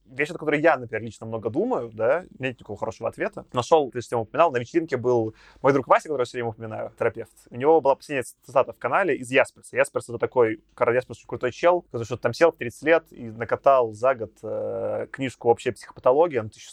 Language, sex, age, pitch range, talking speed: Russian, male, 20-39, 125-190 Hz, 210 wpm